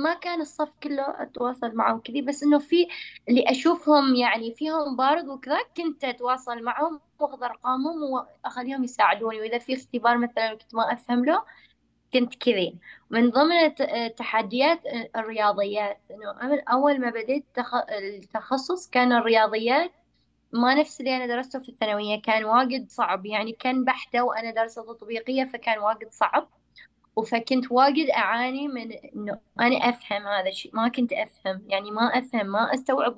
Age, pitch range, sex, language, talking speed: 20-39, 220-270 Hz, female, Arabic, 145 wpm